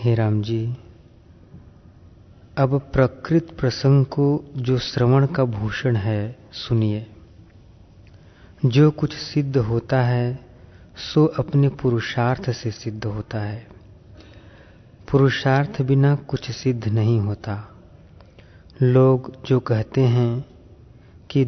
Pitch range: 105-130 Hz